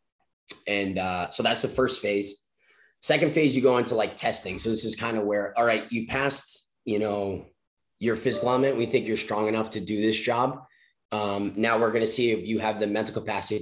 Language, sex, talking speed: English, male, 220 wpm